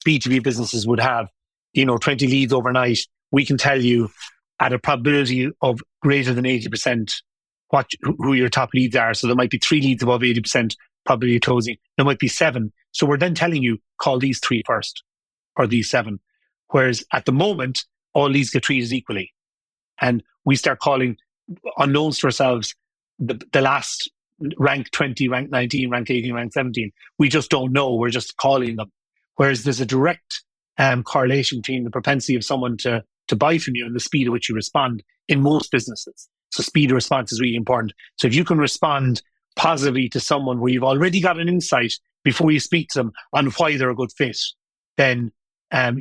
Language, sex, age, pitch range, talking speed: English, male, 30-49, 125-145 Hz, 190 wpm